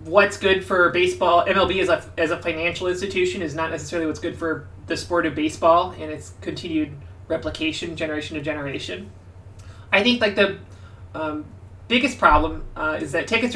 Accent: American